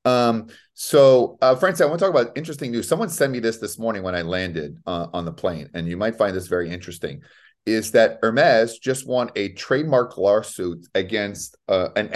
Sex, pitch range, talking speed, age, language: male, 90-110 Hz, 200 wpm, 30-49, English